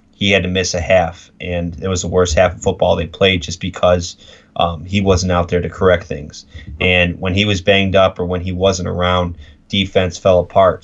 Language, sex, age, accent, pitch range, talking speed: English, male, 20-39, American, 85-95 Hz, 220 wpm